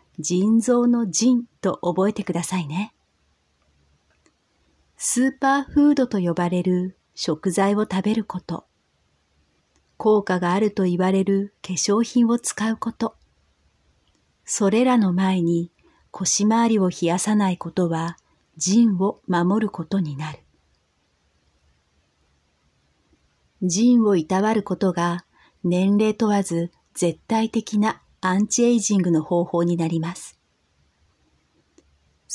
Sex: female